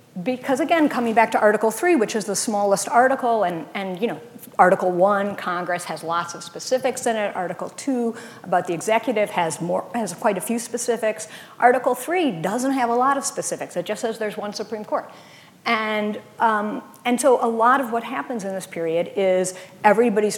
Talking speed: 195 wpm